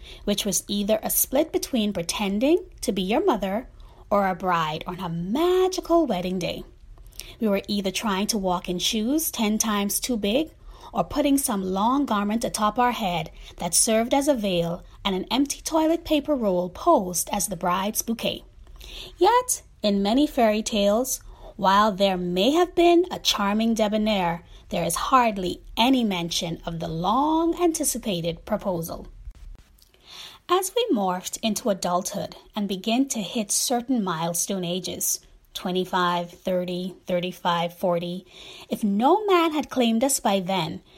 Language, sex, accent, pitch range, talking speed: English, female, American, 185-265 Hz, 150 wpm